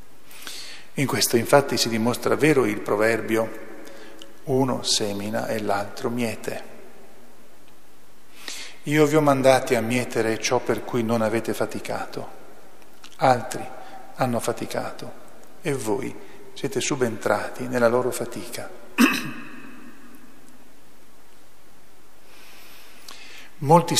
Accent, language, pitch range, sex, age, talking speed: native, Italian, 110-140 Hz, male, 40-59, 90 wpm